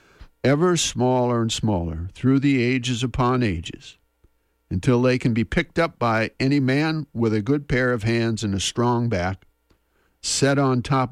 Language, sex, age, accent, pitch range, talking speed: English, male, 50-69, American, 100-140 Hz, 165 wpm